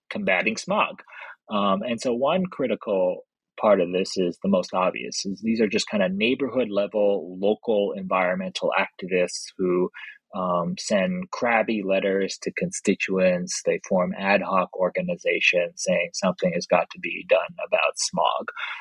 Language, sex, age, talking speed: English, male, 30-49, 145 wpm